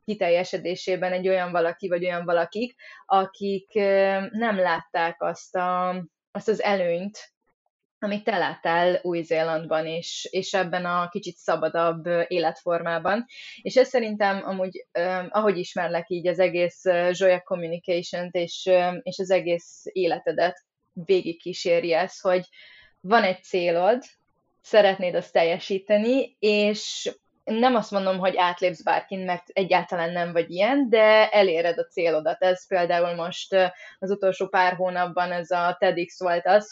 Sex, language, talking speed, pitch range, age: female, Hungarian, 130 wpm, 175-195 Hz, 20-39